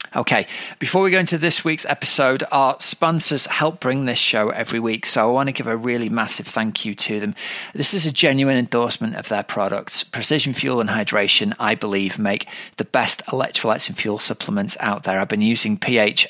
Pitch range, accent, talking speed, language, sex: 110-140 Hz, British, 205 wpm, English, male